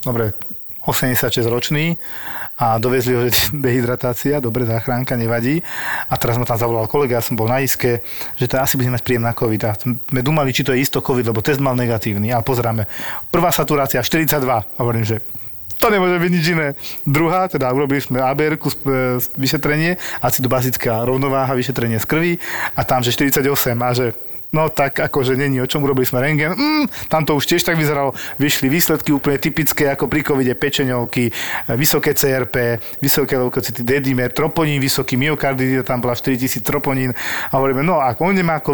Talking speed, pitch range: 180 wpm, 125-145 Hz